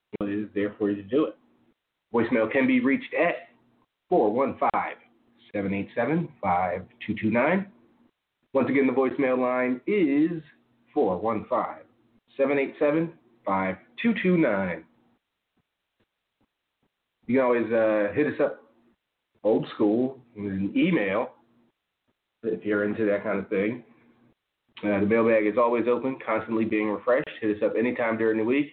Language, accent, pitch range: English, American, 105-140 Hz